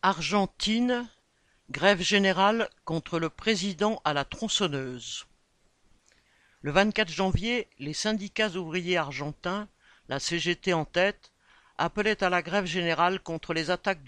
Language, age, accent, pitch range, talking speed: French, 60-79, French, 155-195 Hz, 120 wpm